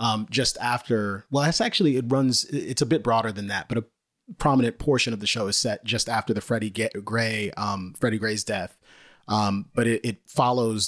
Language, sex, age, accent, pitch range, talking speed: English, male, 30-49, American, 110-130 Hz, 210 wpm